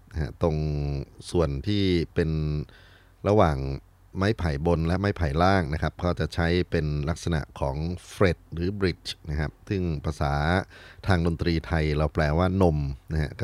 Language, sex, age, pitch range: Thai, male, 30-49, 80-95 Hz